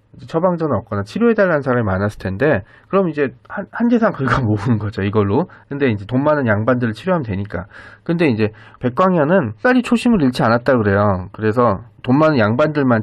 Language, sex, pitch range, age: Korean, male, 110-150 Hz, 40-59